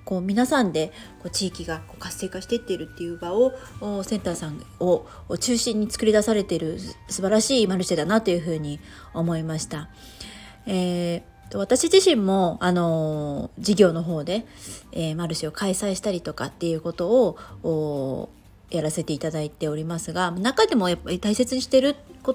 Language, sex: Japanese, female